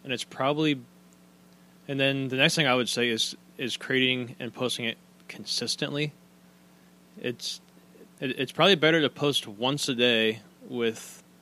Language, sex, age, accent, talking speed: English, male, 20-39, American, 145 wpm